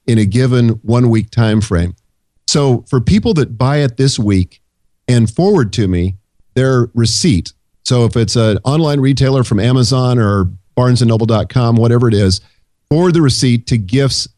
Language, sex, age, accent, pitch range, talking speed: English, male, 50-69, American, 105-135 Hz, 165 wpm